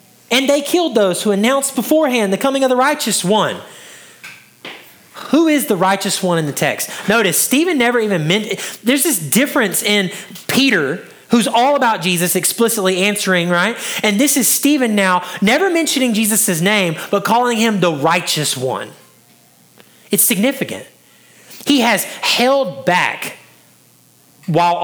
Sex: male